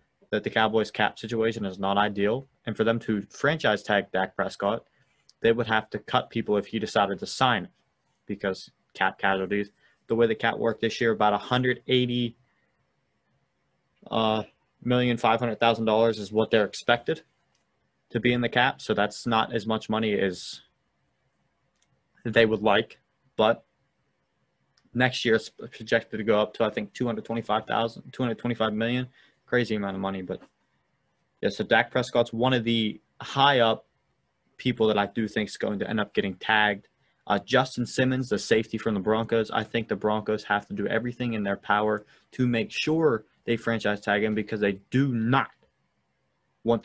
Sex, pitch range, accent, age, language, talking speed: male, 105-115 Hz, American, 20-39, English, 175 wpm